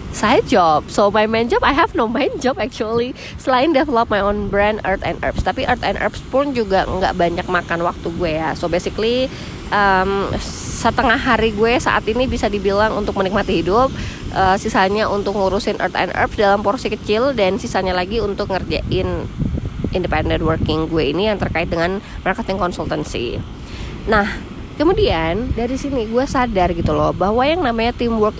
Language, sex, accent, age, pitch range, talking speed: Indonesian, female, native, 20-39, 175-225 Hz, 170 wpm